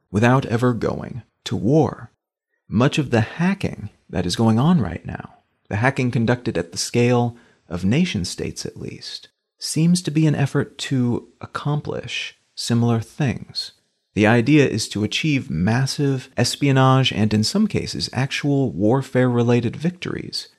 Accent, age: American, 30-49